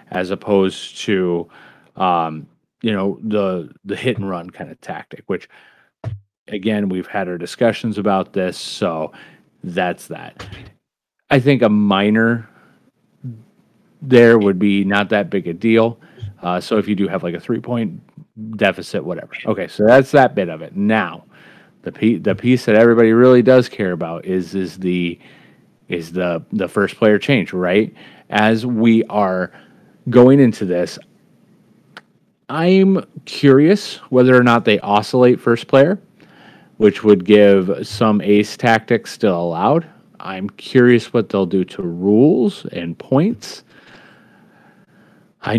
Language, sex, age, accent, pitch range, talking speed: English, male, 30-49, American, 95-115 Hz, 145 wpm